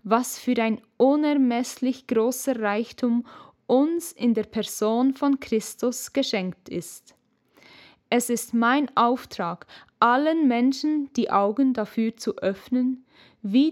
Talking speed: 115 wpm